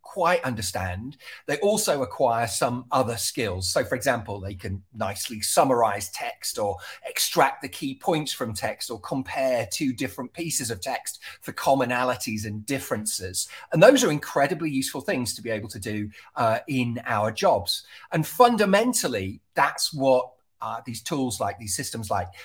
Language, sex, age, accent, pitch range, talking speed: English, male, 40-59, British, 105-155 Hz, 160 wpm